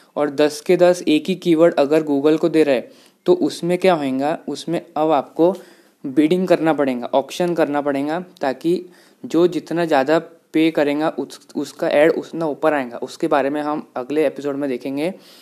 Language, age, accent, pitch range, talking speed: English, 20-39, Indian, 140-165 Hz, 175 wpm